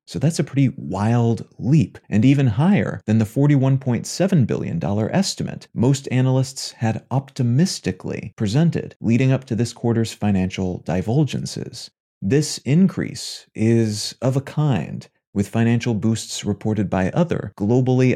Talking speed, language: 130 wpm, English